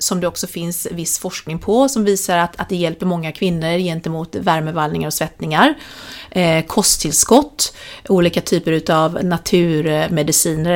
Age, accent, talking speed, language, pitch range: 30-49, native, 140 wpm, Swedish, 175-225 Hz